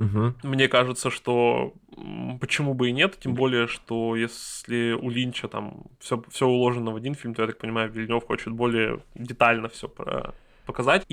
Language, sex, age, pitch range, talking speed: Russian, male, 20-39, 115-130 Hz, 155 wpm